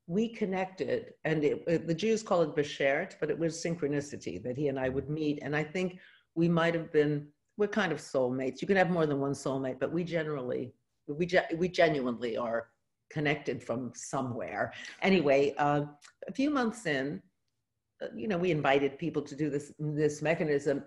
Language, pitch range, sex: English, 140-170 Hz, female